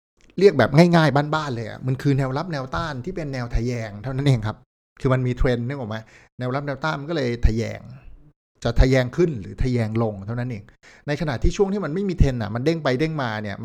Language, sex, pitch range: Thai, male, 110-140 Hz